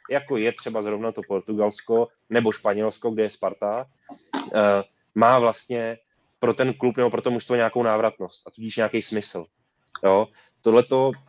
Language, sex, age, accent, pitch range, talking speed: Czech, male, 20-39, native, 110-125 Hz, 160 wpm